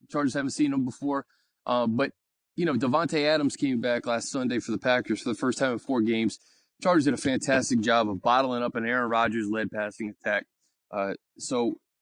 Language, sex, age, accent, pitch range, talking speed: English, male, 20-39, American, 110-150 Hz, 200 wpm